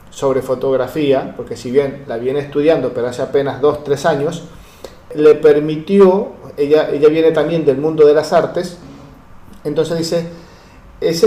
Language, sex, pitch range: Spanish, male, 145-180 Hz